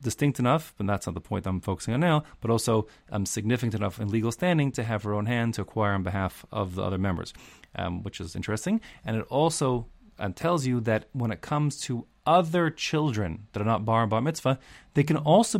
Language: English